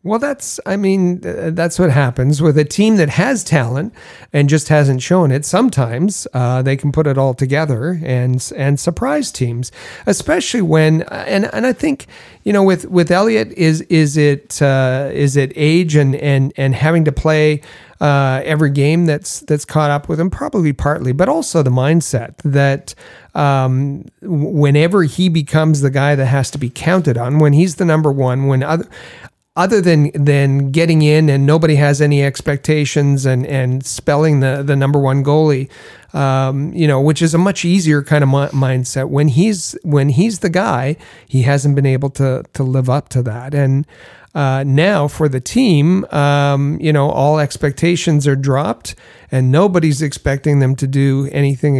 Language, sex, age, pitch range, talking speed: English, male, 40-59, 135-160 Hz, 175 wpm